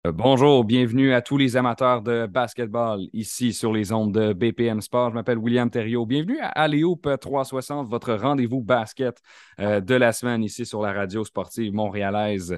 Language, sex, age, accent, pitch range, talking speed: French, male, 30-49, Canadian, 100-125 Hz, 165 wpm